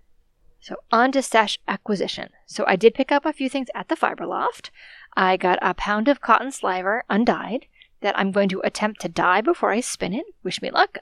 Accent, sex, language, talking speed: American, female, English, 210 wpm